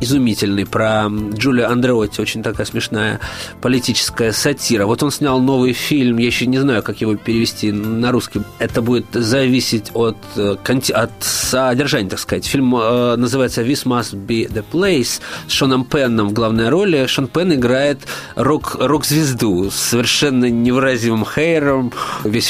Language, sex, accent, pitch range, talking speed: Russian, male, native, 110-135 Hz, 145 wpm